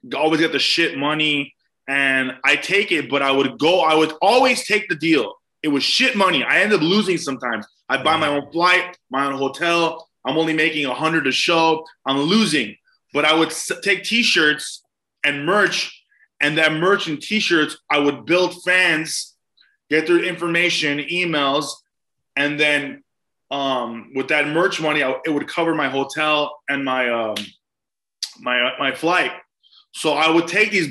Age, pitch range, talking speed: 20-39, 145-190 Hz, 175 wpm